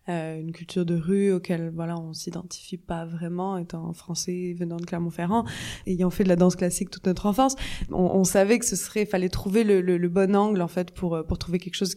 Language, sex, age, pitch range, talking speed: French, female, 20-39, 170-195 Hz, 225 wpm